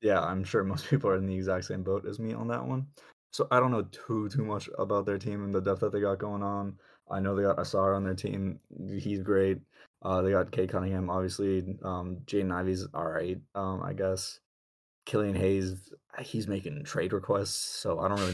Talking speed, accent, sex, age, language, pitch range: 220 wpm, American, male, 20-39, English, 95-105 Hz